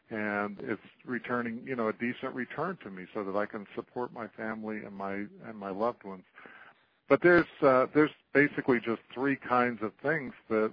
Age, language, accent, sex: 50-69, English, American, male